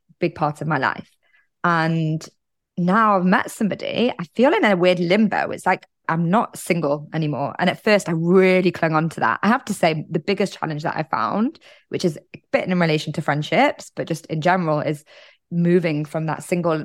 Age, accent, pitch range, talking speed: 20-39, British, 155-185 Hz, 205 wpm